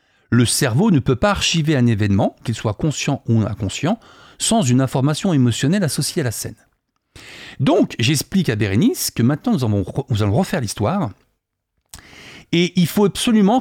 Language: French